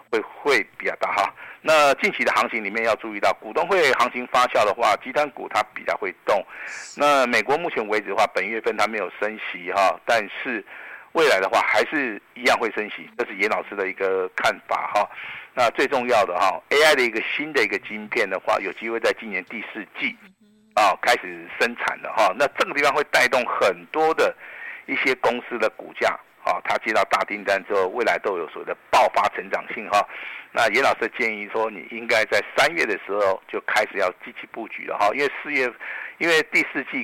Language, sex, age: Chinese, male, 50-69